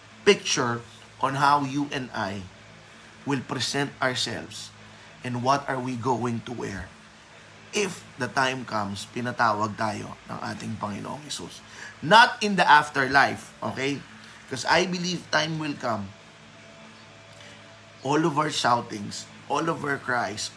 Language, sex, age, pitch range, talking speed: Filipino, male, 20-39, 110-140 Hz, 130 wpm